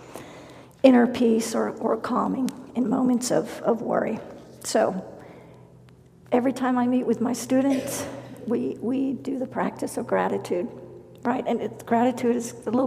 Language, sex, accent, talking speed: English, female, American, 145 wpm